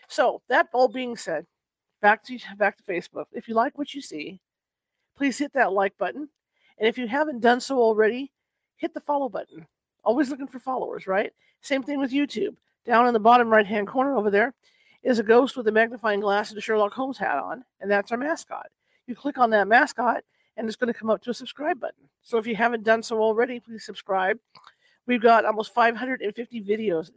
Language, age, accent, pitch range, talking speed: English, 50-69, American, 205-250 Hz, 210 wpm